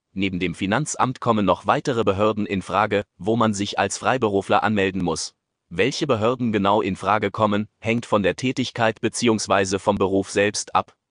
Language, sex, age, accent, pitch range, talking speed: German, male, 30-49, German, 100-115 Hz, 165 wpm